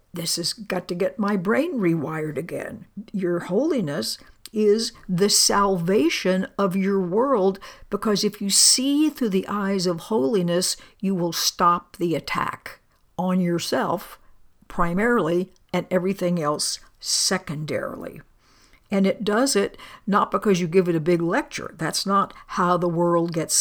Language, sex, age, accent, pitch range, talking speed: English, female, 60-79, American, 175-205 Hz, 140 wpm